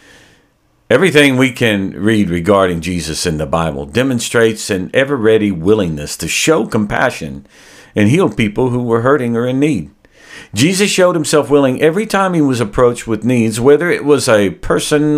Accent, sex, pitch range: American, male, 100-145 Hz